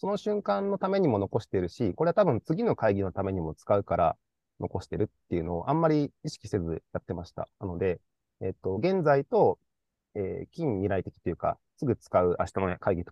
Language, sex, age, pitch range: Japanese, male, 30-49, 95-145 Hz